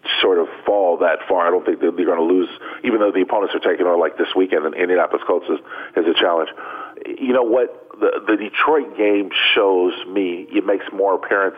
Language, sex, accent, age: English, male, American, 40-59